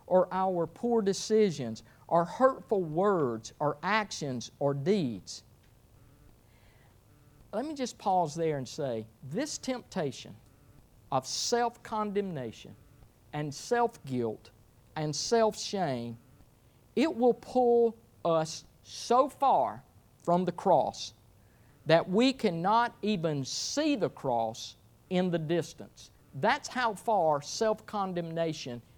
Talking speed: 100 wpm